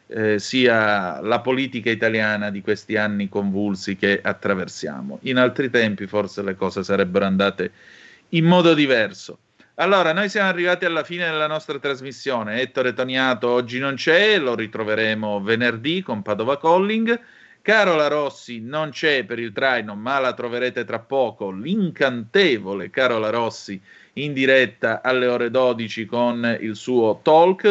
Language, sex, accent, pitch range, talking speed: Italian, male, native, 115-160 Hz, 145 wpm